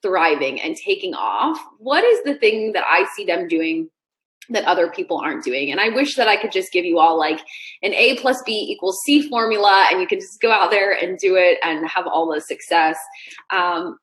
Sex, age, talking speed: female, 20-39, 220 wpm